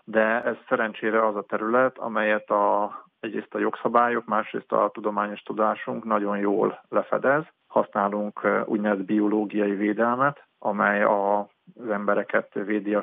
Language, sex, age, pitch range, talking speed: Hungarian, male, 50-69, 100-110 Hz, 125 wpm